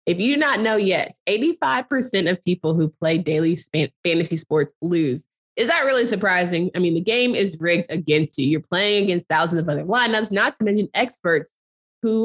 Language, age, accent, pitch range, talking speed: English, 20-39, American, 165-215 Hz, 190 wpm